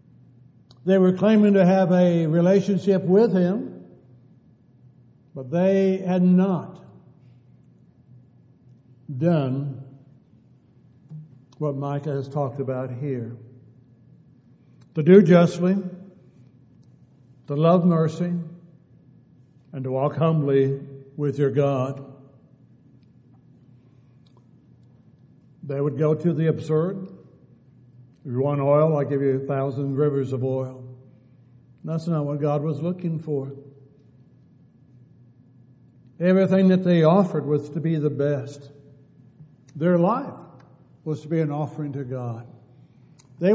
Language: English